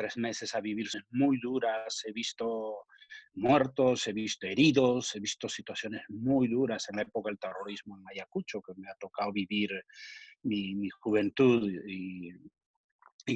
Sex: male